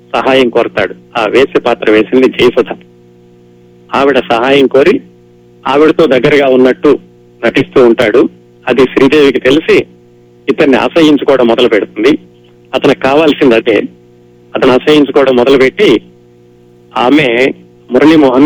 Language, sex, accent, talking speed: Telugu, male, native, 95 wpm